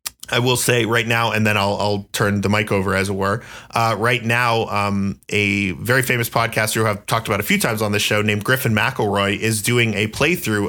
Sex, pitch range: male, 100-115 Hz